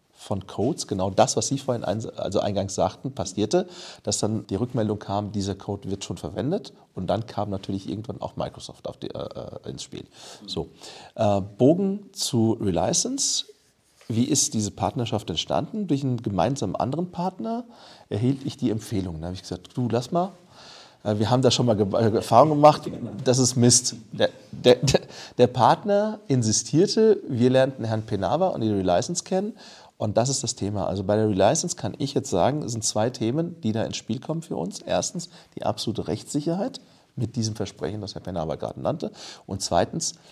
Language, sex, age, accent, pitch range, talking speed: German, male, 40-59, German, 105-145 Hz, 185 wpm